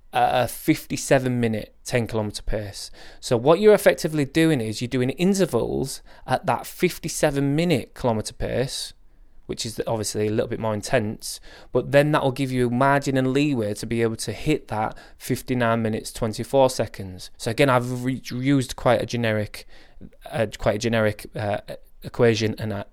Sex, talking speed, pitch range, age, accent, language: male, 165 wpm, 110-135 Hz, 20-39, British, English